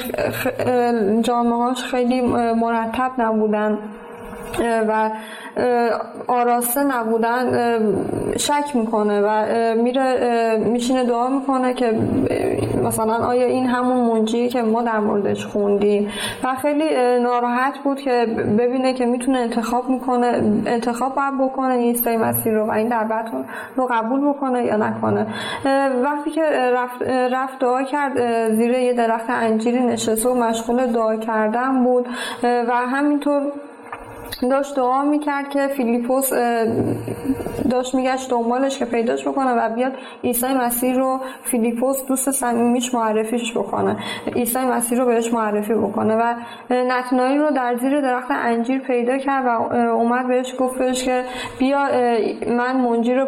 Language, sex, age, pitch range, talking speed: Persian, female, 20-39, 230-255 Hz, 125 wpm